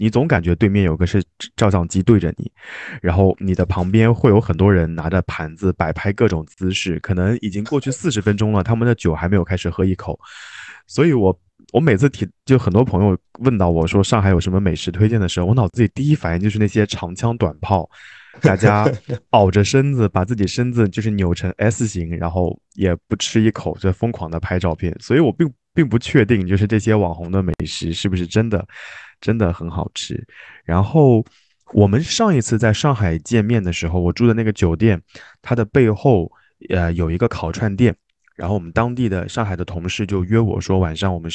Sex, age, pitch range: male, 20-39, 90-115 Hz